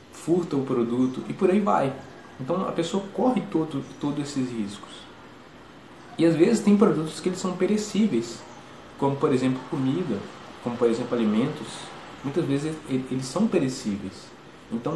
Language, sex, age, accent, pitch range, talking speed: English, male, 20-39, Brazilian, 130-175 Hz, 145 wpm